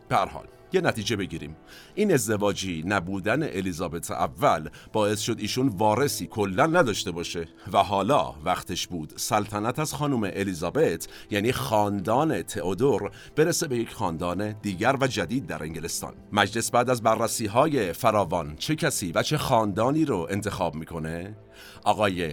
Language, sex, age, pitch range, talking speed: Persian, male, 50-69, 95-130 Hz, 135 wpm